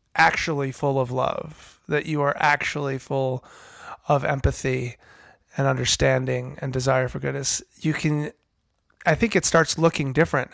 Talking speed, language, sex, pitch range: 140 wpm, English, male, 130-150 Hz